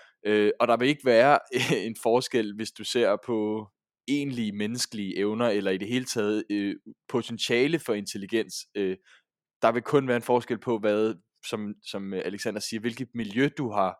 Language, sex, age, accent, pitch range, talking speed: Danish, male, 20-39, native, 105-130 Hz, 165 wpm